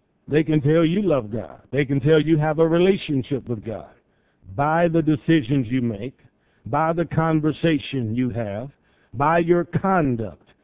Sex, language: male, English